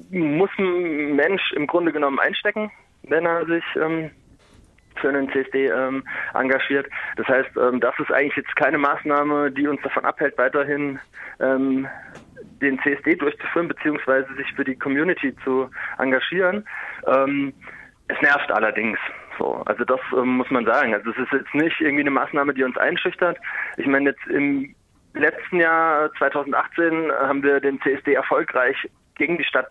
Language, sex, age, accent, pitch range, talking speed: German, male, 20-39, German, 135-155 Hz, 155 wpm